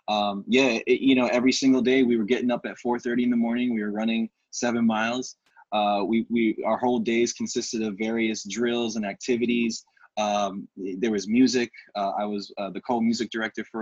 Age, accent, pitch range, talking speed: 20-39, American, 105-120 Hz, 205 wpm